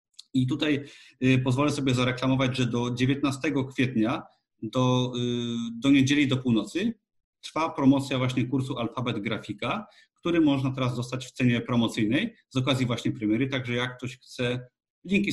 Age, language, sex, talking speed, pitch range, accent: 40-59, Polish, male, 140 wpm, 115-135 Hz, native